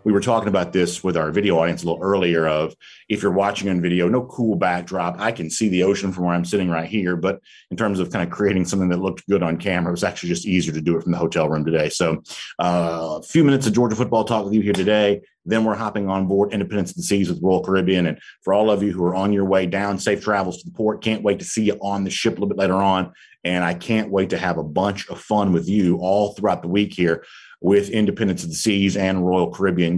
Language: English